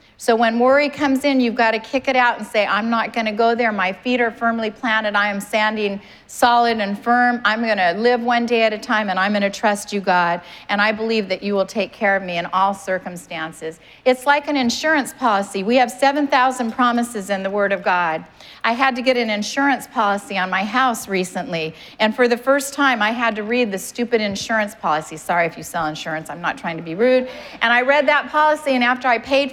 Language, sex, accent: English, female, American